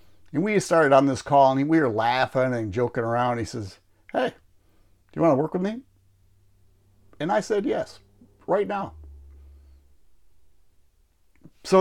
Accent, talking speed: American, 150 wpm